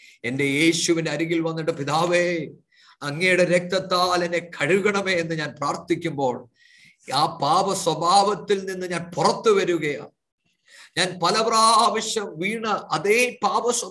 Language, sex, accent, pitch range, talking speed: English, male, Indian, 140-195 Hz, 45 wpm